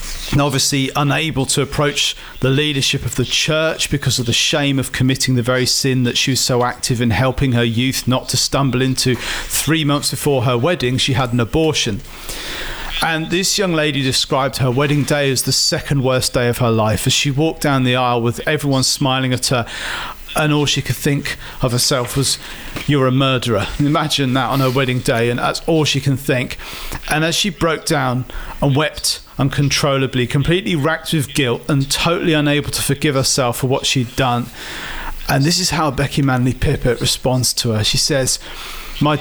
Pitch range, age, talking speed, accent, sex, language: 125-150 Hz, 40-59, 190 wpm, British, male, English